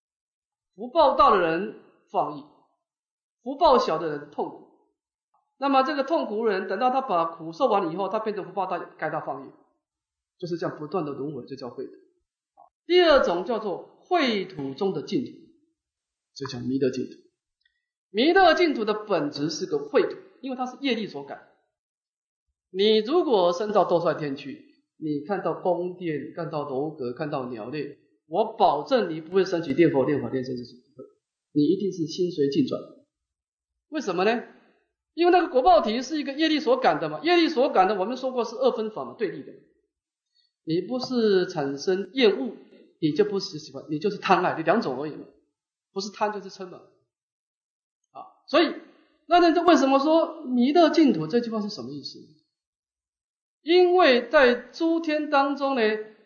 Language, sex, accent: English, male, Chinese